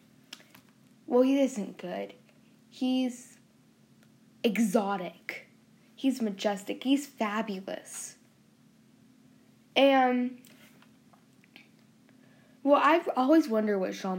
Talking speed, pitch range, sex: 75 wpm, 200-265 Hz, female